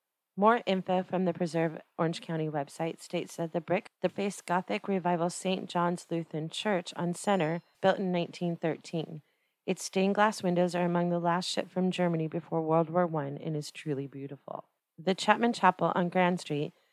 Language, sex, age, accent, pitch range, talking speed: English, female, 30-49, American, 170-195 Hz, 175 wpm